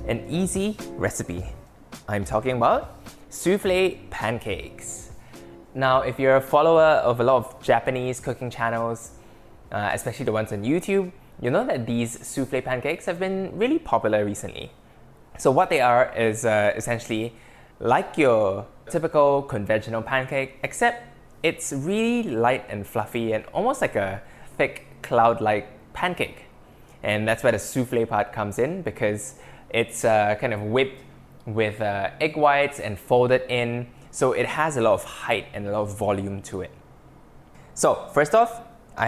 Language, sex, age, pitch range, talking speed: English, male, 10-29, 110-155 Hz, 155 wpm